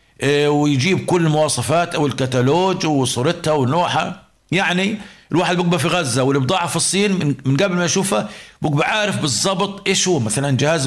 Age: 50-69